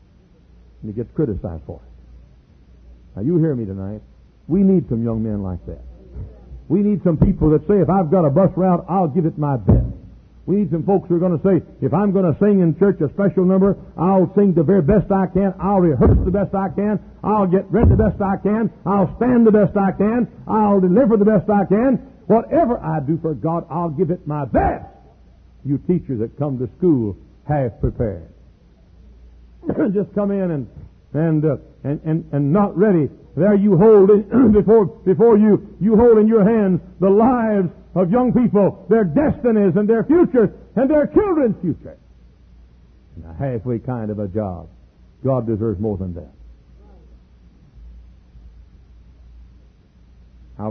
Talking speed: 180 wpm